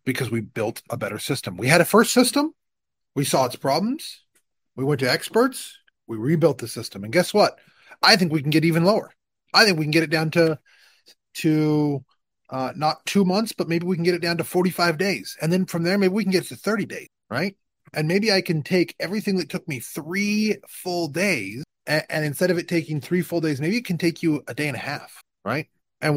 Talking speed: 235 wpm